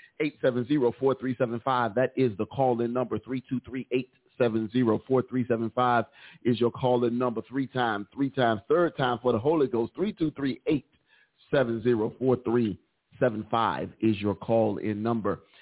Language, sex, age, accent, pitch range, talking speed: English, male, 40-59, American, 120-130 Hz, 140 wpm